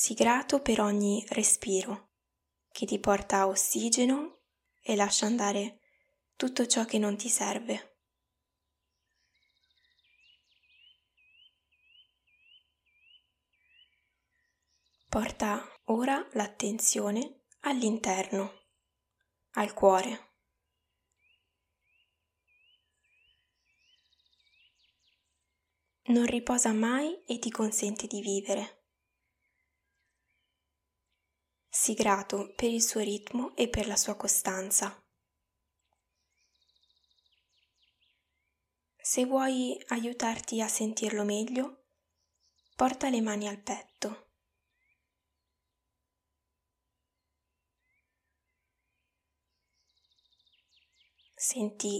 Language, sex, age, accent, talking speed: Italian, female, 10-29, native, 65 wpm